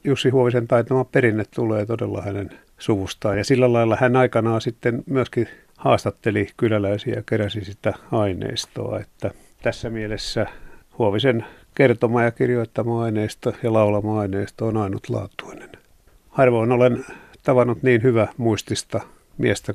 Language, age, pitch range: Finnish, 50-69, 100-120 Hz